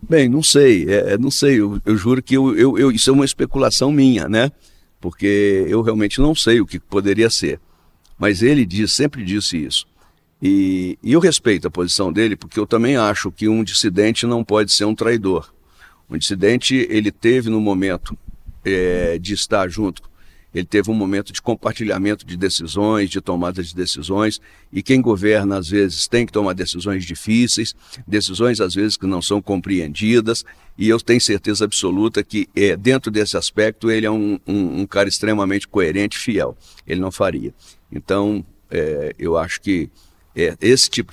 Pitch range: 90-110 Hz